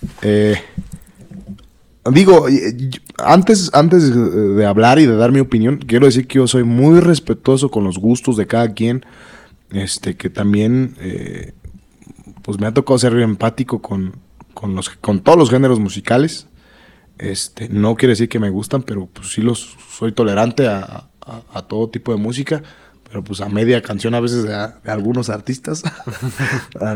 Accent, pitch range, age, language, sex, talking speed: Mexican, 105-130 Hz, 20-39, Spanish, male, 165 wpm